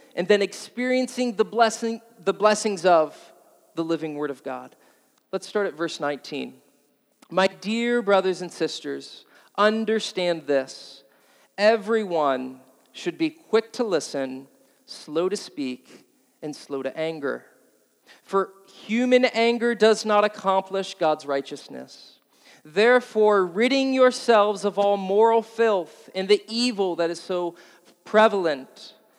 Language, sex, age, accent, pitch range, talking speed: English, male, 40-59, American, 160-225 Hz, 125 wpm